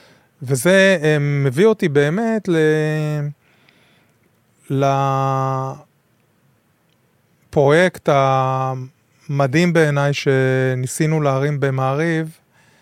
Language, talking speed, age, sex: Hebrew, 55 wpm, 20-39, male